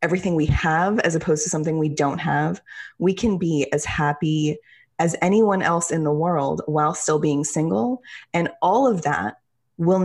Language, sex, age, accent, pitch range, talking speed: English, female, 20-39, American, 145-175 Hz, 180 wpm